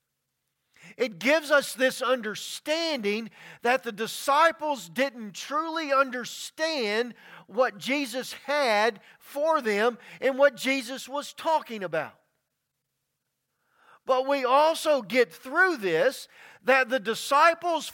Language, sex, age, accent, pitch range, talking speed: English, male, 50-69, American, 225-295 Hz, 105 wpm